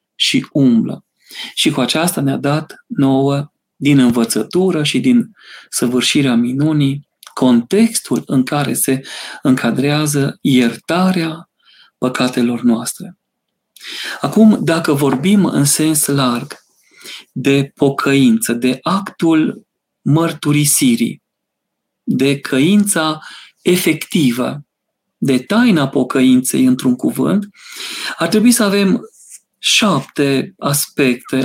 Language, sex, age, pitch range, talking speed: Romanian, male, 40-59, 135-195 Hz, 90 wpm